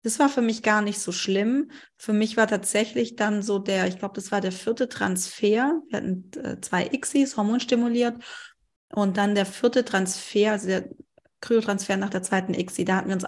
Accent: German